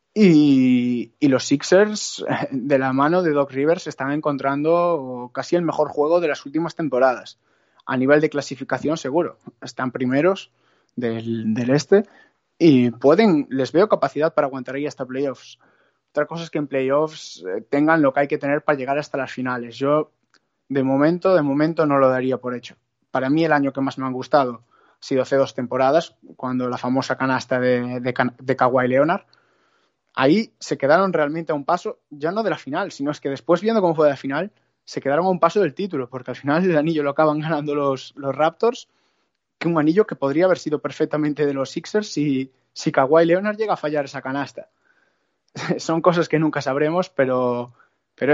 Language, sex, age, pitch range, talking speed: Spanish, male, 20-39, 130-160 Hz, 195 wpm